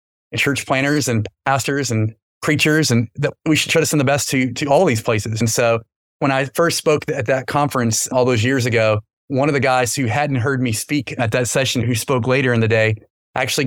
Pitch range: 115-140 Hz